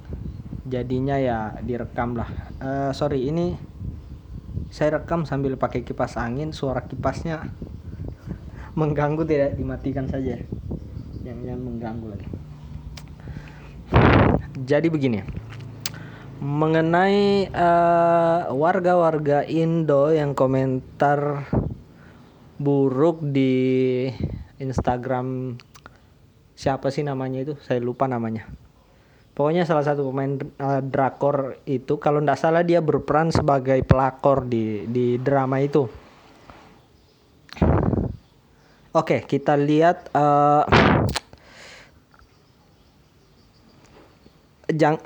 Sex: male